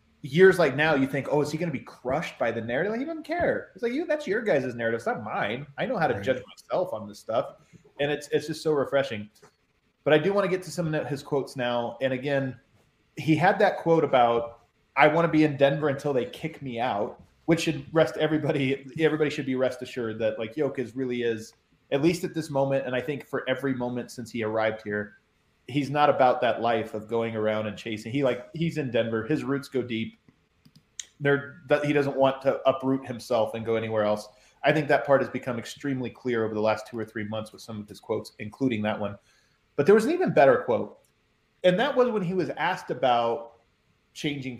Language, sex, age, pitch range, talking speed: English, male, 30-49, 115-150 Hz, 235 wpm